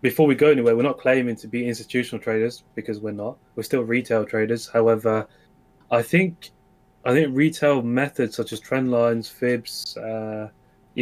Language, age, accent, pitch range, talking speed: English, 20-39, British, 115-130 Hz, 170 wpm